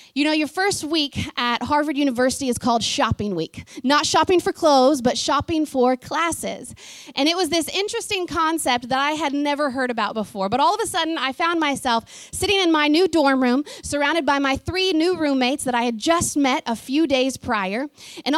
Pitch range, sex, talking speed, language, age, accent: 255-320 Hz, female, 205 wpm, English, 30-49, American